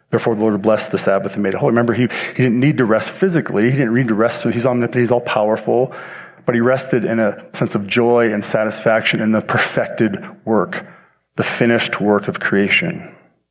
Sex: male